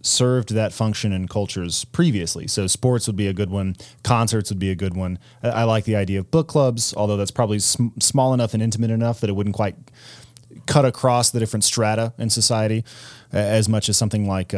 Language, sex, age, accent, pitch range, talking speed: English, male, 30-49, American, 100-120 Hz, 210 wpm